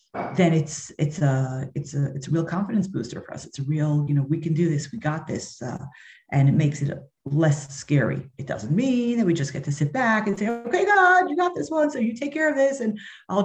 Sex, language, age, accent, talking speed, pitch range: female, English, 40-59, American, 260 wpm, 140-180 Hz